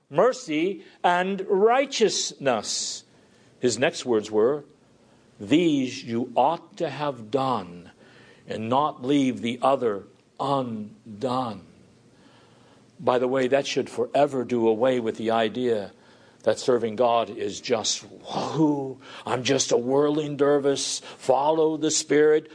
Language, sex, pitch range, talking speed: English, male, 140-220 Hz, 115 wpm